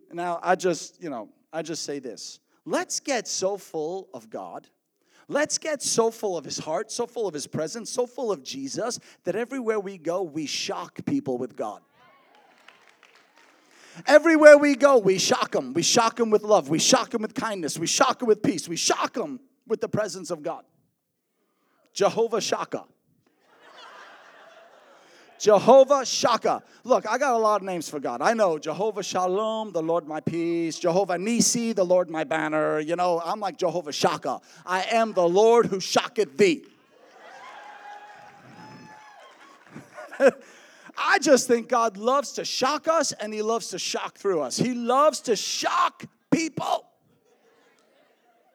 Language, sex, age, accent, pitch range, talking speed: English, male, 30-49, American, 180-280 Hz, 160 wpm